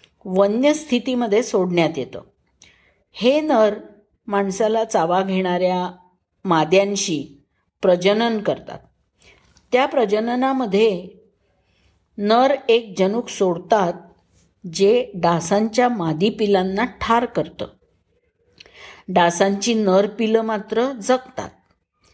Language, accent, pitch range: Marathi, native, 170-220 Hz